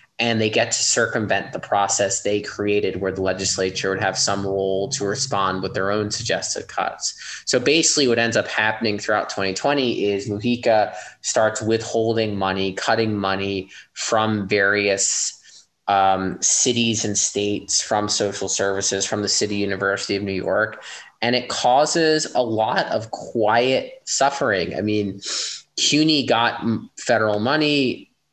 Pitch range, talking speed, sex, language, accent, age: 100-120 Hz, 145 wpm, male, English, American, 20-39